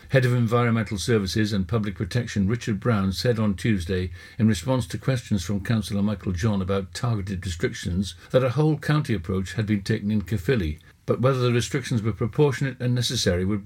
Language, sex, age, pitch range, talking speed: English, male, 60-79, 95-120 Hz, 185 wpm